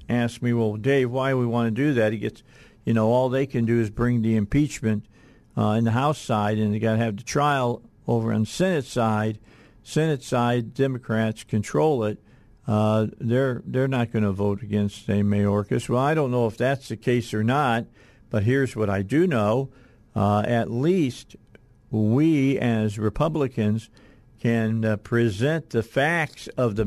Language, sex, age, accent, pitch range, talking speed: English, male, 50-69, American, 110-125 Hz, 185 wpm